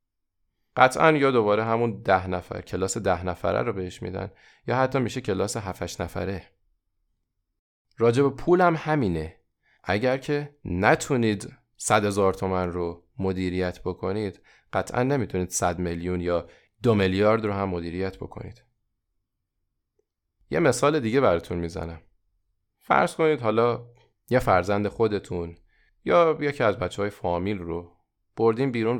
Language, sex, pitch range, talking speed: Persian, male, 95-125 Hz, 125 wpm